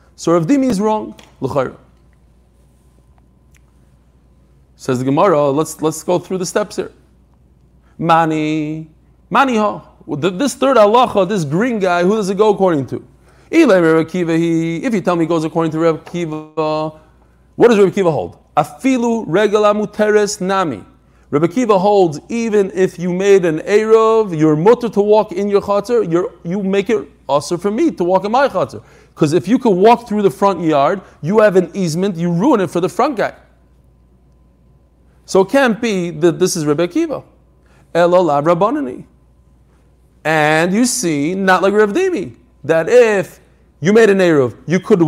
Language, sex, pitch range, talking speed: English, male, 145-210 Hz, 155 wpm